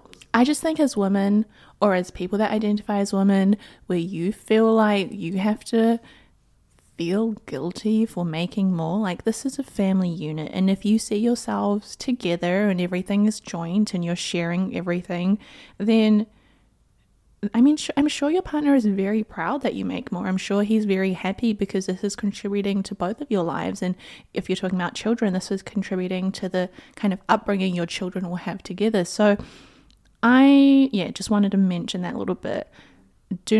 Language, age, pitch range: English, 20-39, 185-230 Hz